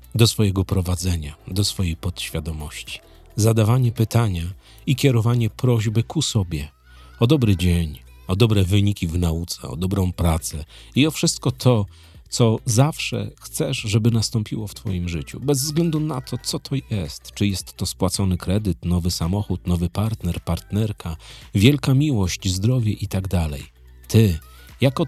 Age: 40-59